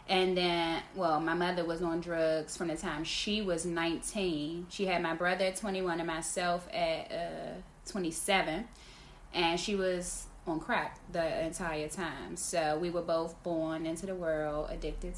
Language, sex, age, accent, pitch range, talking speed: English, female, 10-29, American, 165-190 Hz, 165 wpm